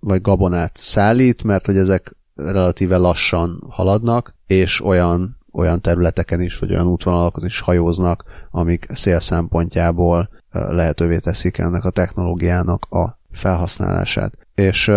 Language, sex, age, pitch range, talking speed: Hungarian, male, 30-49, 90-105 Hz, 120 wpm